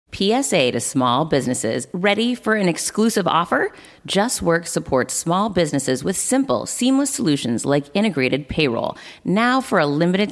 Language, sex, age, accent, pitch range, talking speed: English, female, 30-49, American, 145-205 Hz, 145 wpm